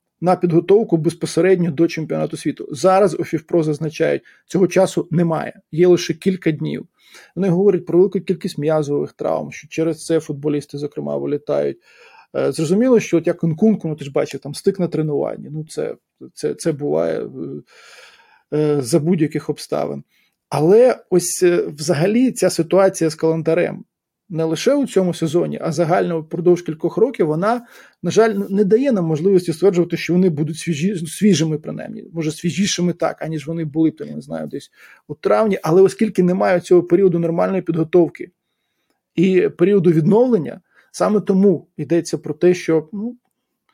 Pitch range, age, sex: 155-185 Hz, 20-39, male